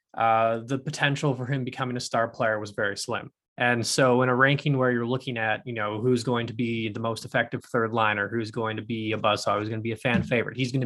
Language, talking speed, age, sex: English, 265 wpm, 20-39, male